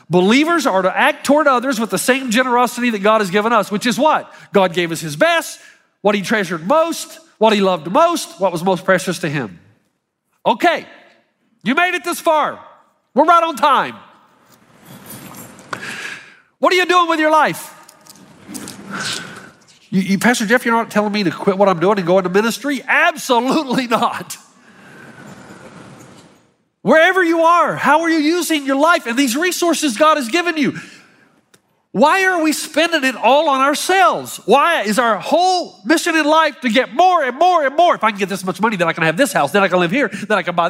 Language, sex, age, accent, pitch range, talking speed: English, male, 50-69, American, 210-320 Hz, 195 wpm